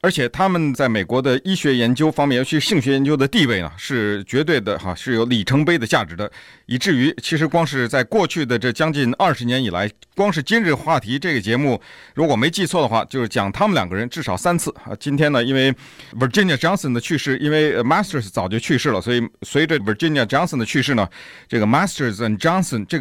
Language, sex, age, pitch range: Chinese, male, 50-69, 120-160 Hz